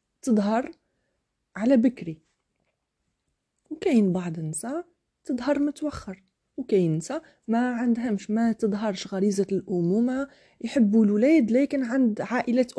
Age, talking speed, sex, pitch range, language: 30-49, 100 wpm, female, 170-225 Hz, Arabic